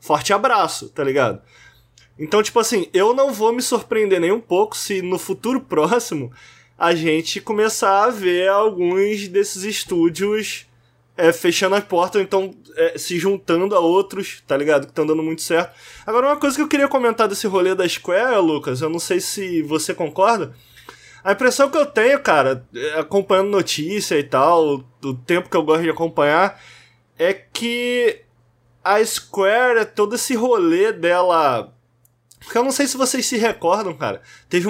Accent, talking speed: Brazilian, 170 wpm